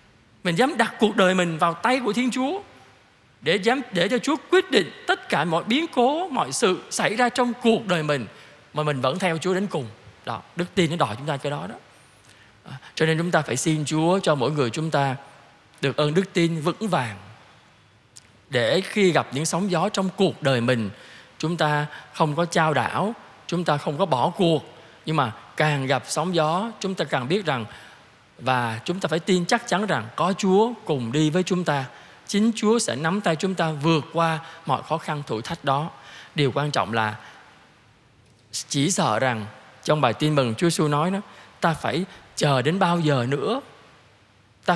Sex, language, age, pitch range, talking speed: male, Vietnamese, 20-39, 140-185 Hz, 200 wpm